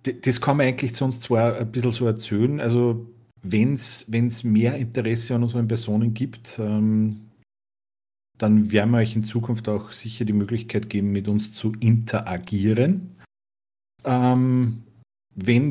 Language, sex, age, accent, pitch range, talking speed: German, male, 50-69, Austrian, 100-120 Hz, 145 wpm